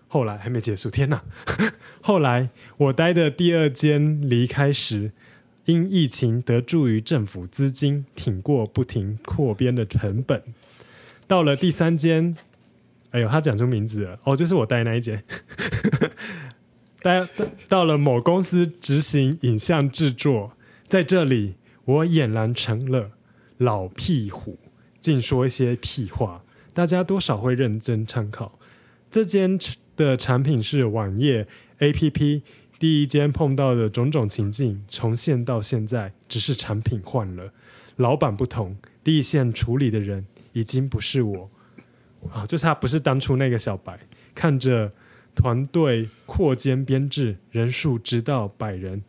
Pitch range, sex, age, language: 110-145 Hz, male, 20-39, Chinese